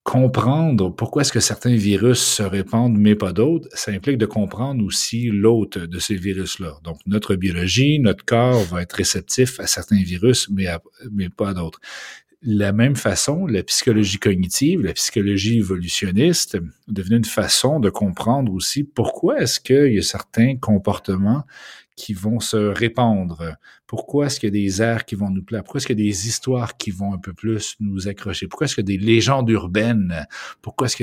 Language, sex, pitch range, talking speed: French, male, 95-115 Hz, 190 wpm